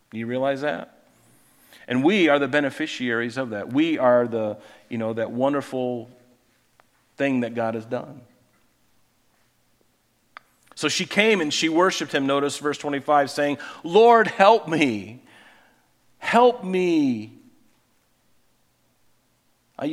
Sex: male